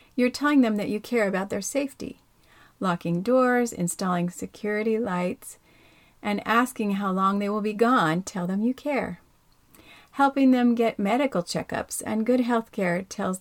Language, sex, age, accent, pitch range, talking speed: English, female, 40-59, American, 185-240 Hz, 160 wpm